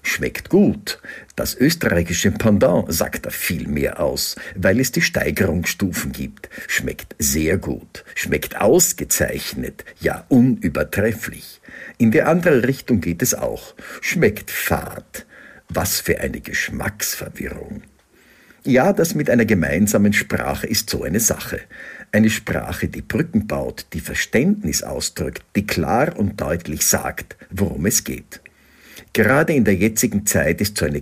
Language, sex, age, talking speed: German, male, 60-79, 135 wpm